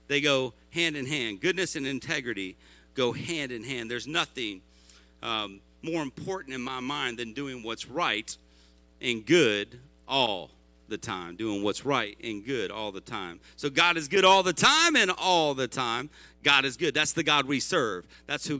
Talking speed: 185 wpm